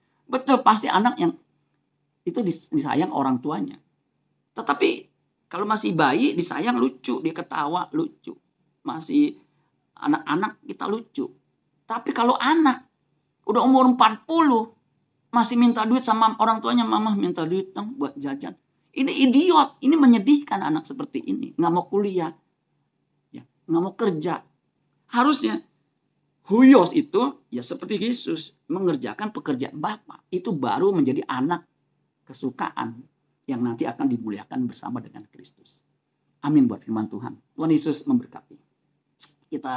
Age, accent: 40-59, native